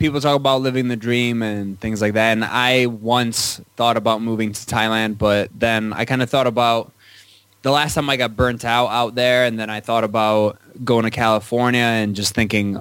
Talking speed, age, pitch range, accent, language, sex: 210 wpm, 20-39, 100-120 Hz, American, English, male